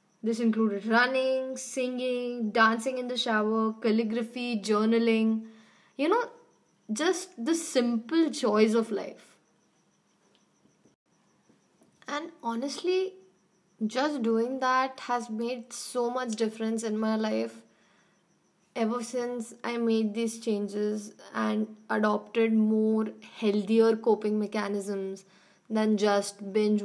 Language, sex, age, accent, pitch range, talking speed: English, female, 20-39, Indian, 205-240 Hz, 105 wpm